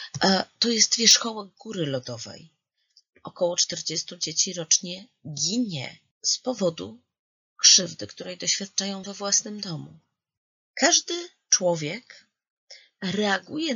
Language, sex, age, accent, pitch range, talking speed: Polish, female, 30-49, native, 170-230 Hz, 90 wpm